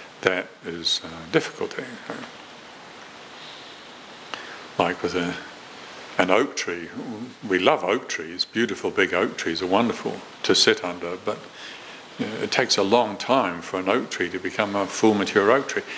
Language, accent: English, British